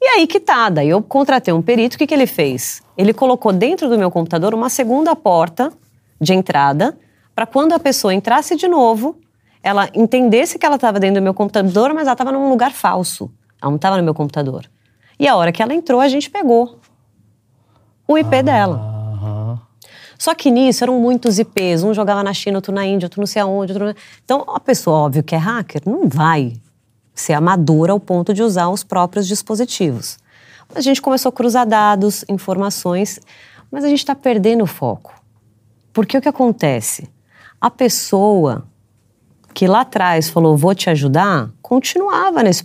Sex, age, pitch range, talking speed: female, 30-49, 160-265 Hz, 180 wpm